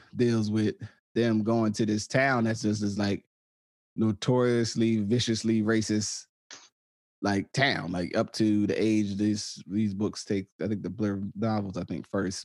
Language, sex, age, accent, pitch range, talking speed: English, male, 20-39, American, 95-115 Hz, 160 wpm